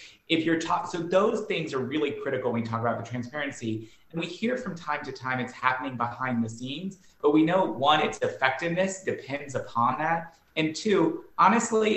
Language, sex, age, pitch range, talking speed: English, male, 30-49, 115-165 Hz, 195 wpm